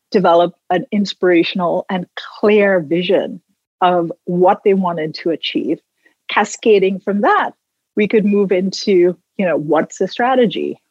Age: 40-59